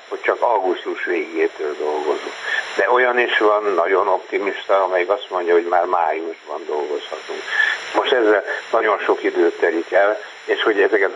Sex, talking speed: male, 150 wpm